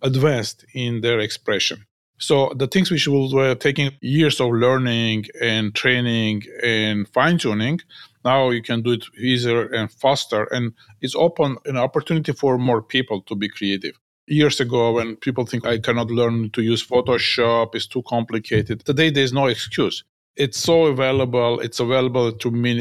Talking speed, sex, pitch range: 160 wpm, male, 110-130 Hz